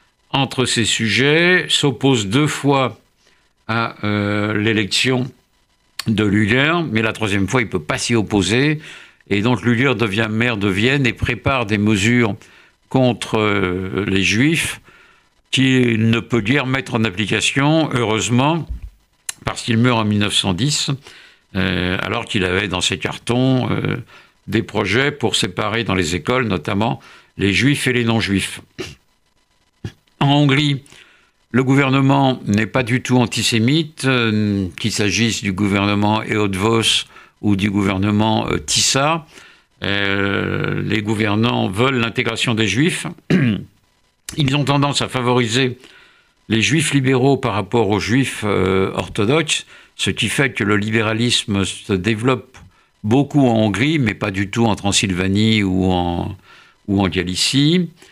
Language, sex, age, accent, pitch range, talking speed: French, male, 60-79, French, 105-130 Hz, 135 wpm